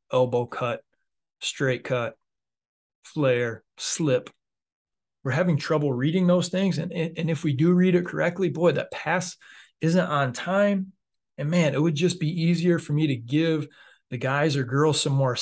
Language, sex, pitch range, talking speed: English, male, 125-150 Hz, 165 wpm